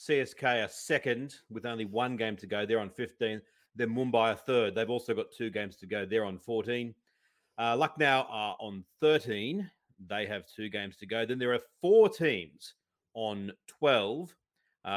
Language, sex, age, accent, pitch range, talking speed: English, male, 40-59, Australian, 100-120 Hz, 175 wpm